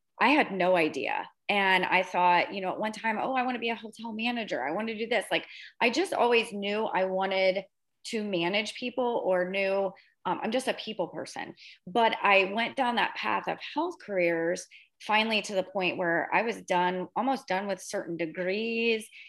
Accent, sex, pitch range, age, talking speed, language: American, female, 185-230 Hz, 30-49, 200 wpm, English